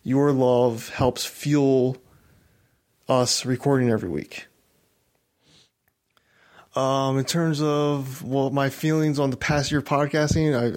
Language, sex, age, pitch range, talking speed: English, male, 20-39, 125-150 Hz, 125 wpm